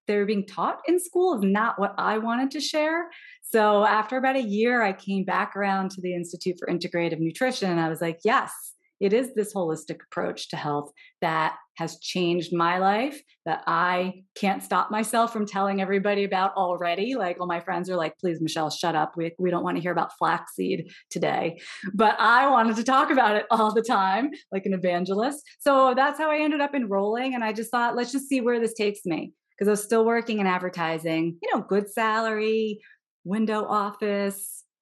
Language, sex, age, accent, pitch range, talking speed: English, female, 30-49, American, 175-230 Hz, 205 wpm